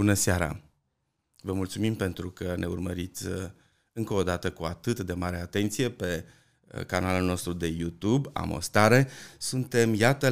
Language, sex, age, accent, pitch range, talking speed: Romanian, male, 30-49, native, 95-120 Hz, 140 wpm